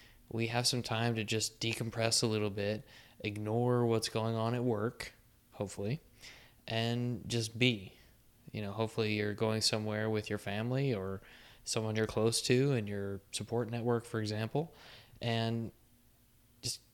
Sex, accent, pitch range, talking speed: male, American, 105-120 Hz, 150 wpm